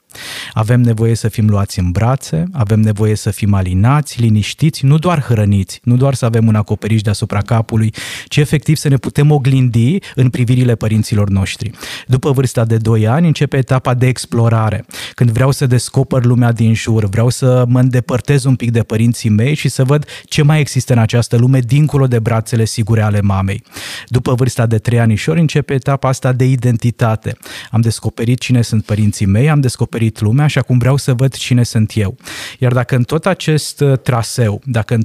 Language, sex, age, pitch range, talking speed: Romanian, male, 20-39, 115-140 Hz, 190 wpm